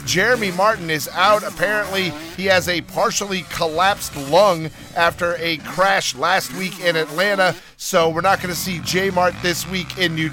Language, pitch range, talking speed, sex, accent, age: English, 155-190 Hz, 170 wpm, male, American, 40-59